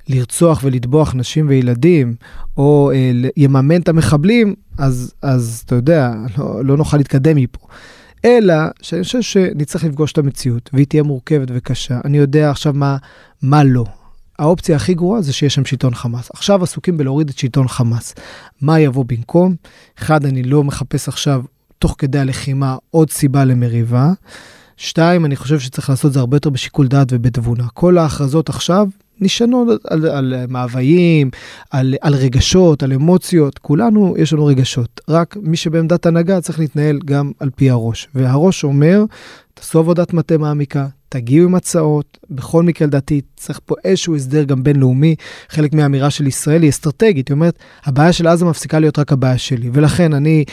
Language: Hebrew